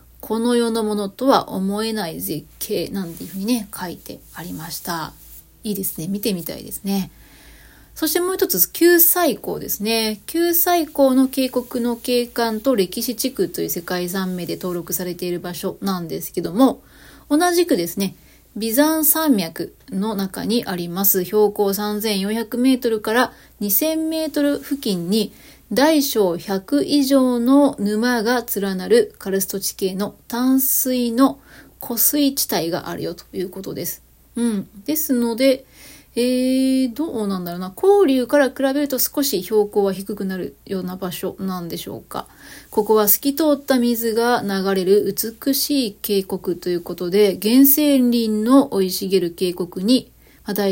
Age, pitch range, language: 30-49, 195-265 Hz, Japanese